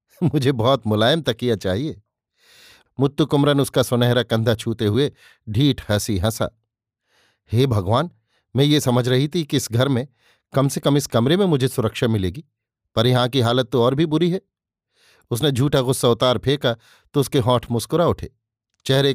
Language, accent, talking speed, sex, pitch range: Hindi, native, 170 wpm, male, 110-135 Hz